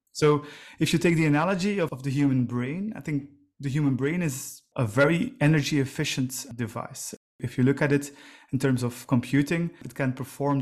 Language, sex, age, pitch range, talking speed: English, male, 30-49, 130-160 Hz, 185 wpm